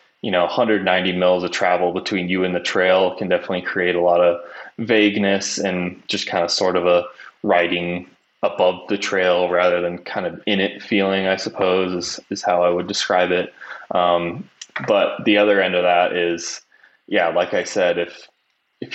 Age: 20-39